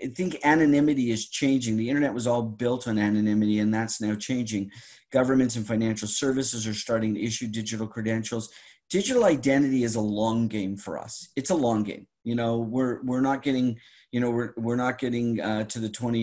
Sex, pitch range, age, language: male, 105-125 Hz, 40-59, English